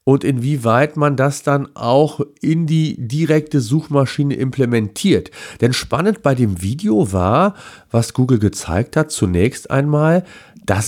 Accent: German